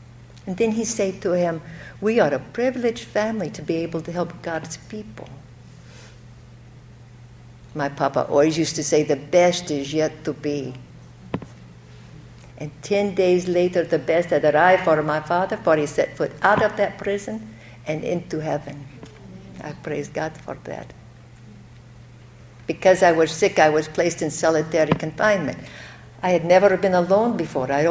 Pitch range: 125-195 Hz